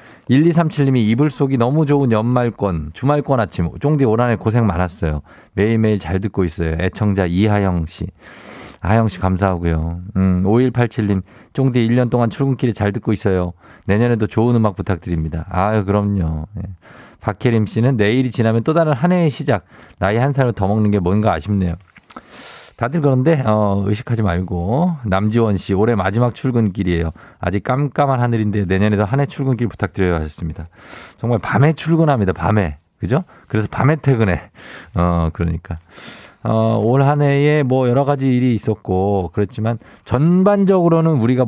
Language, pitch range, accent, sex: Korean, 95-125 Hz, native, male